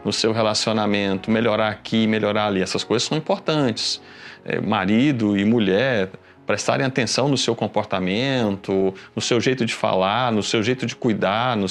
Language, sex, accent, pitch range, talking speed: Portuguese, male, Brazilian, 110-160 Hz, 155 wpm